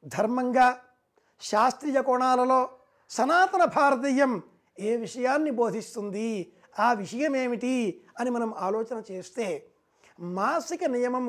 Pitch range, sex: 230-270 Hz, male